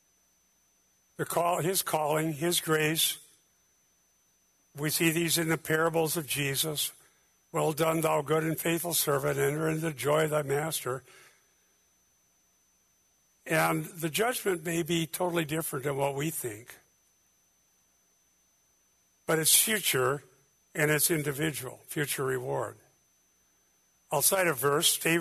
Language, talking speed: English, 125 wpm